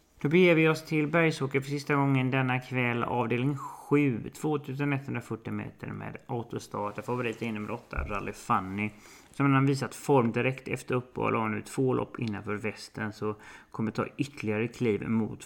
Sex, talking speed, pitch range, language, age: male, 165 wpm, 105-130 Hz, English, 30-49